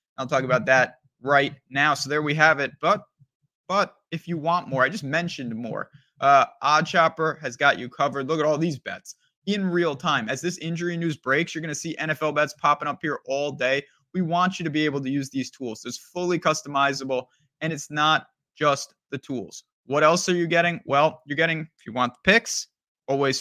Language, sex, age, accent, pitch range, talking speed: English, male, 20-39, American, 135-170 Hz, 220 wpm